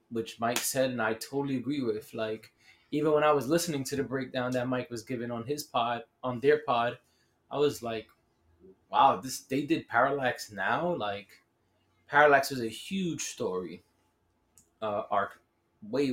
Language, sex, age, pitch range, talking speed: English, male, 20-39, 115-145 Hz, 165 wpm